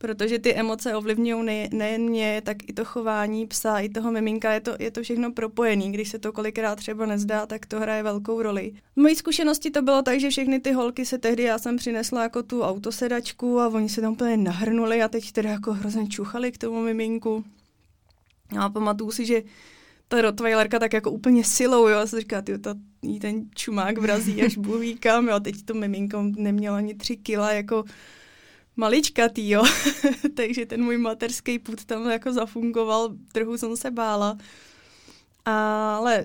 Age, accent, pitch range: 20-39, native, 215-245 Hz